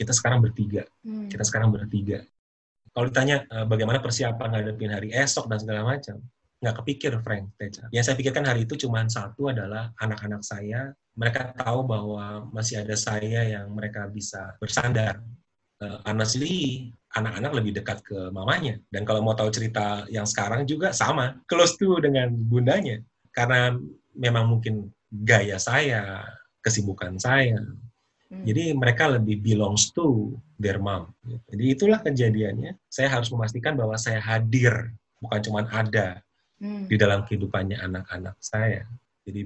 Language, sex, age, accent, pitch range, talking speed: Indonesian, male, 30-49, native, 105-125 Hz, 140 wpm